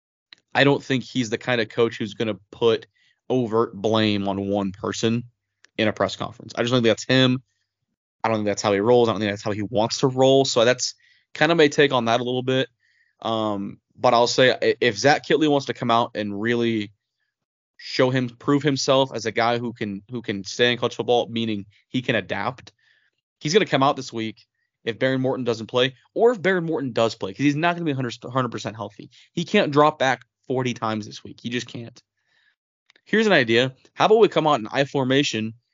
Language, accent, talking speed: English, American, 220 wpm